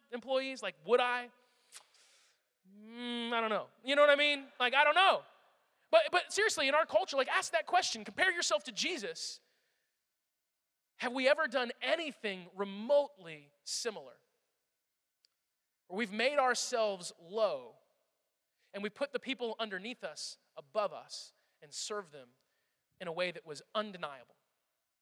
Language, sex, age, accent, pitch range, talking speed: English, male, 20-39, American, 170-260 Hz, 145 wpm